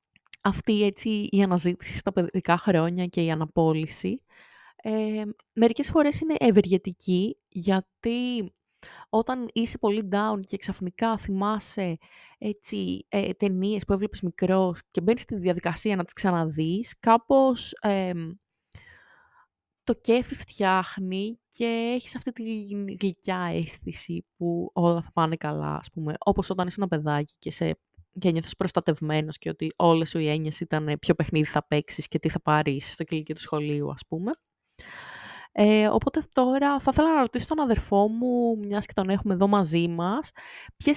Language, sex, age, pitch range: Greek, female, 20-39, 175-235 Hz